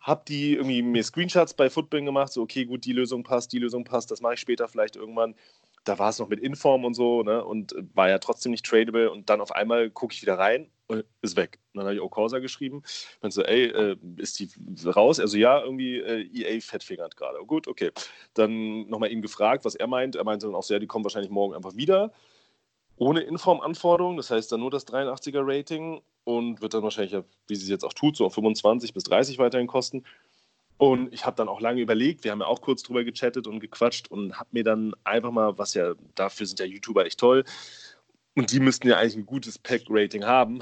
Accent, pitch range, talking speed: German, 110-135 Hz, 230 wpm